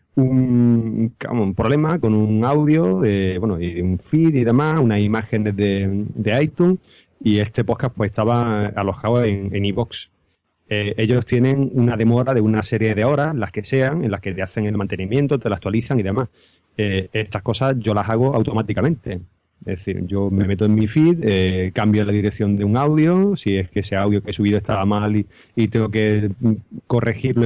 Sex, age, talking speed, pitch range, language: male, 30-49, 195 wpm, 105-120 Hz, Spanish